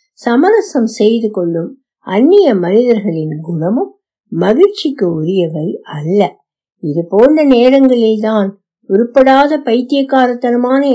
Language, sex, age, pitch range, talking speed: Tamil, female, 60-79, 195-275 Hz, 70 wpm